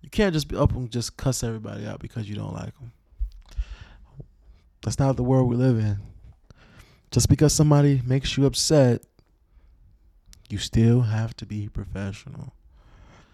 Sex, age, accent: male, 20-39, American